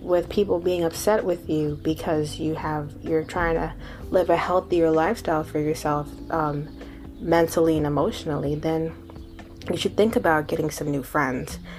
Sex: female